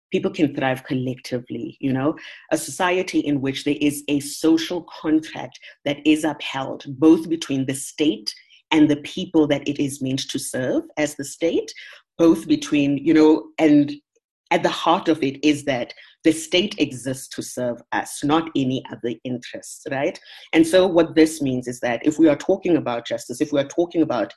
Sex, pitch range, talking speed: female, 130-160 Hz, 185 wpm